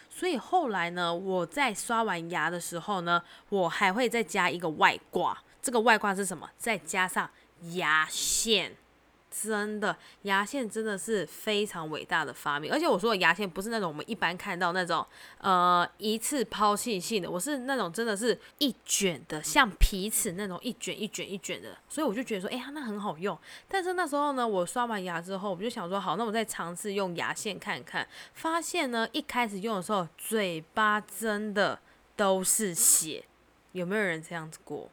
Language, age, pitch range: Chinese, 10-29, 185-245 Hz